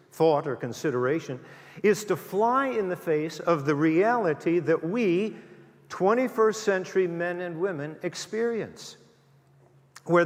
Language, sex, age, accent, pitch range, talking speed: English, male, 50-69, American, 150-210 Hz, 125 wpm